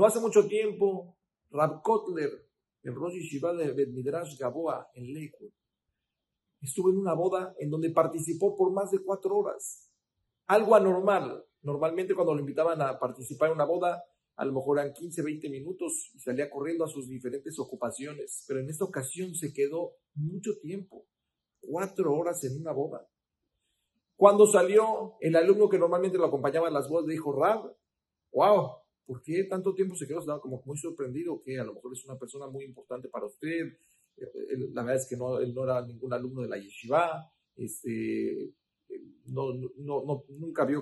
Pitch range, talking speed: 130-190 Hz, 175 wpm